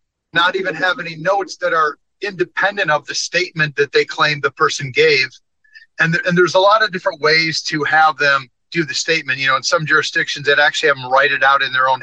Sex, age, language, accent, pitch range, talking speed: male, 40-59, English, American, 145-185 Hz, 235 wpm